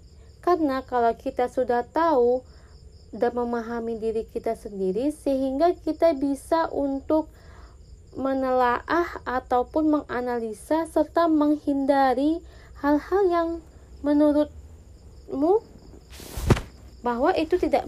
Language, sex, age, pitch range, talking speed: Indonesian, female, 20-39, 225-315 Hz, 85 wpm